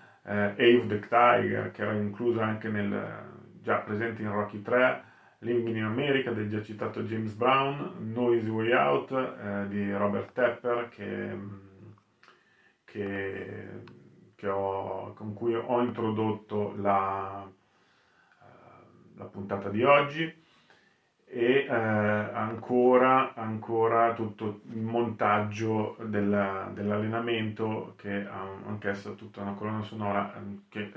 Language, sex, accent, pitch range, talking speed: Italian, male, native, 100-120 Hz, 110 wpm